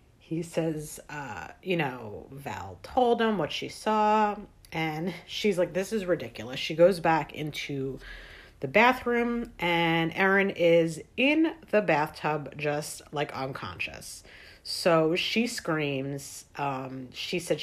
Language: English